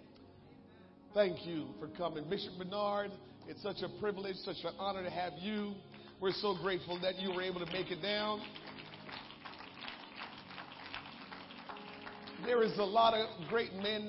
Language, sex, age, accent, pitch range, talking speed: English, male, 40-59, American, 170-205 Hz, 145 wpm